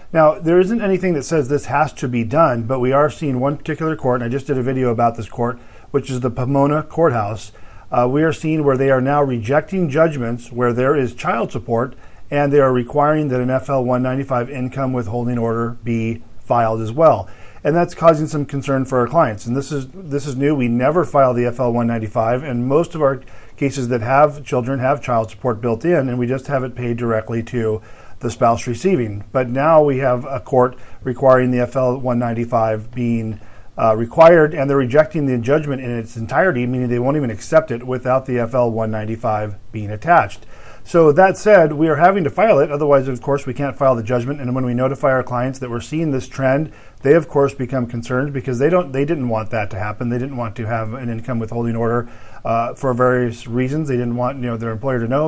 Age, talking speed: 40-59, 220 wpm